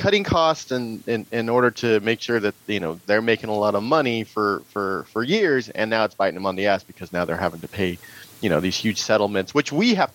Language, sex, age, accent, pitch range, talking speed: English, male, 30-49, American, 105-150 Hz, 260 wpm